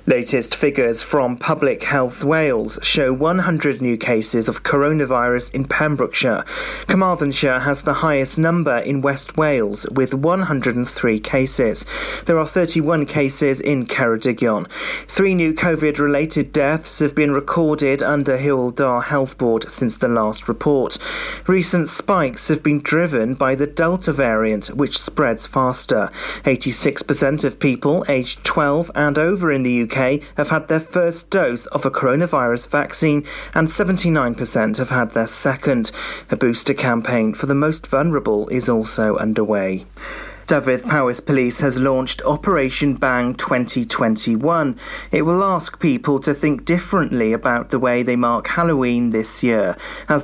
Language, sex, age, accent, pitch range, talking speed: English, male, 40-59, British, 125-160 Hz, 140 wpm